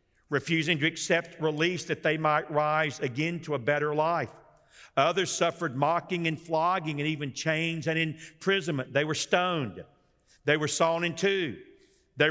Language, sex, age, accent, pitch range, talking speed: English, male, 50-69, American, 155-190 Hz, 155 wpm